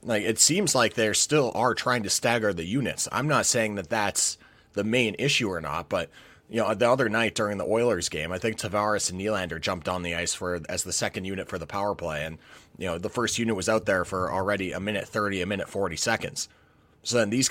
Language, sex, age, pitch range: English, male, 30-49, 95-115 Hz